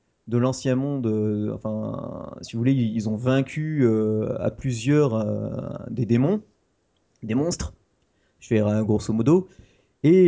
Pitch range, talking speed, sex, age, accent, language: 110-135 Hz, 145 wpm, male, 30-49, French, French